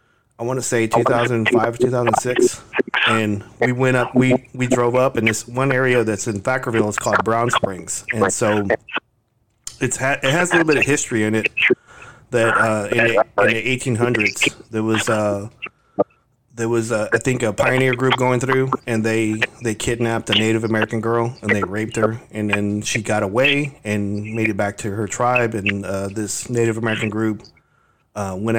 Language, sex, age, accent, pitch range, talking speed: English, male, 30-49, American, 110-125 Hz, 190 wpm